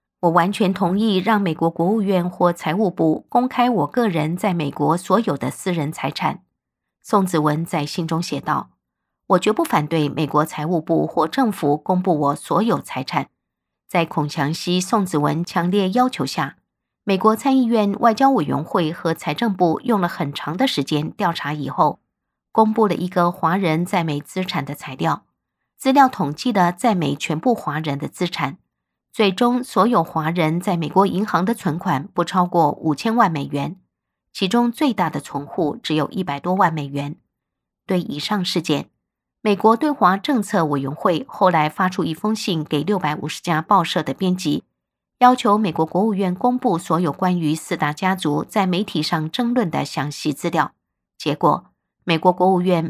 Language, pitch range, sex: Chinese, 155-205 Hz, female